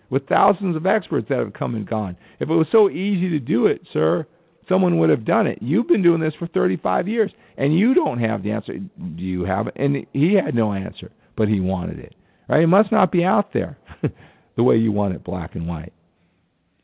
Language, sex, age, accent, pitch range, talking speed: English, male, 50-69, American, 95-145 Hz, 230 wpm